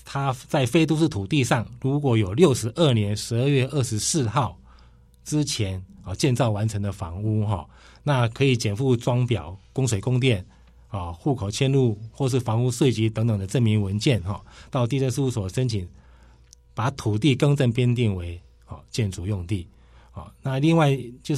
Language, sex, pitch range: Chinese, male, 100-140 Hz